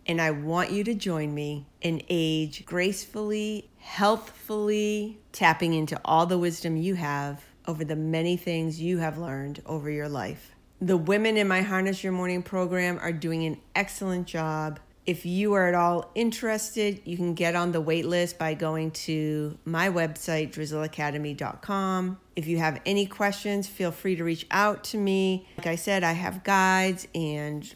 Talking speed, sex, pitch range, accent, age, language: 170 wpm, female, 165-210 Hz, American, 40-59, English